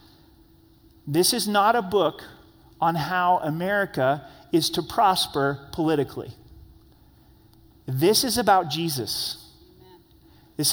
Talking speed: 95 wpm